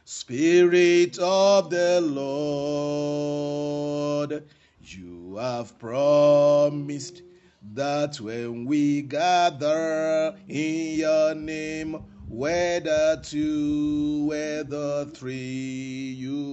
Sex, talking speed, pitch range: male, 70 wpm, 115-145 Hz